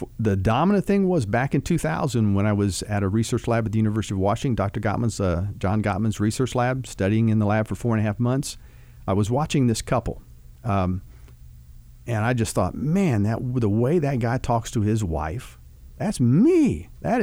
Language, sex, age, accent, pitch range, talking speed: English, male, 50-69, American, 95-125 Hz, 205 wpm